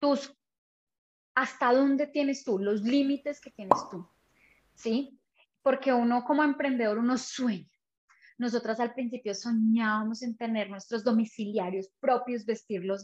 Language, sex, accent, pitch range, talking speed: Spanish, female, Colombian, 210-250 Hz, 125 wpm